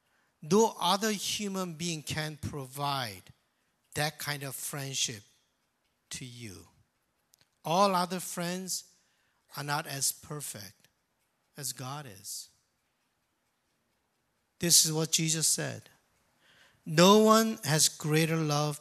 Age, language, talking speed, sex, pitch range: 50-69, English, 100 wpm, male, 125-165 Hz